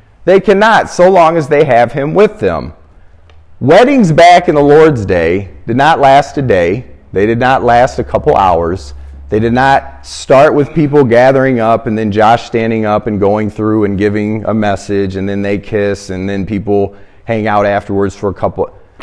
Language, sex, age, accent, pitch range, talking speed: English, male, 40-59, American, 100-165 Hz, 190 wpm